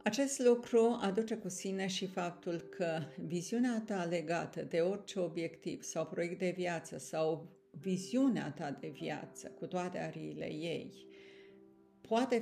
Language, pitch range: Romanian, 165-205 Hz